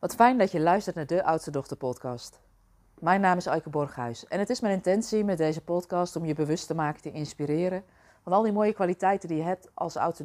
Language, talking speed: Dutch, 235 wpm